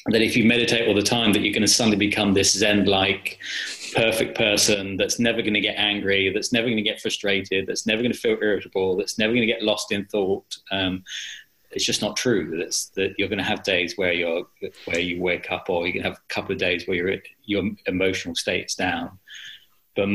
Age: 20-39